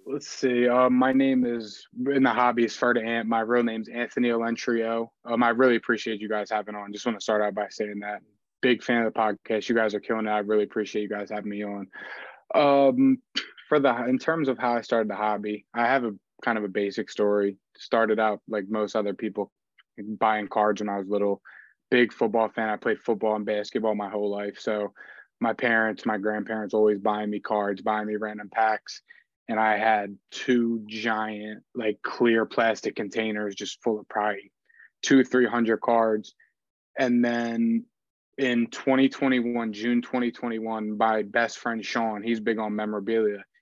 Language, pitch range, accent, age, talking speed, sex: English, 105-120 Hz, American, 20-39, 185 wpm, male